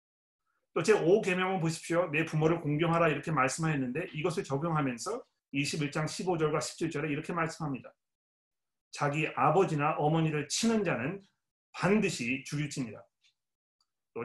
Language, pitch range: Korean, 140-175 Hz